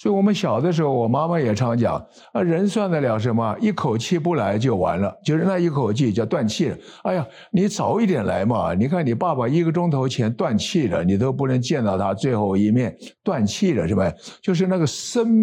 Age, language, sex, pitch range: 60-79, Chinese, male, 130-185 Hz